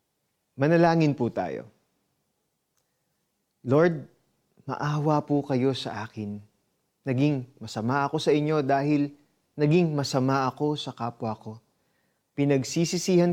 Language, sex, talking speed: Filipino, male, 100 wpm